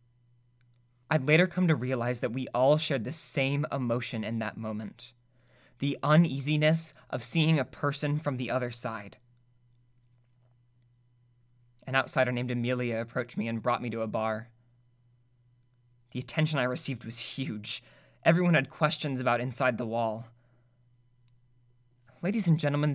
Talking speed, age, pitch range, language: 140 wpm, 20-39, 120-150 Hz, English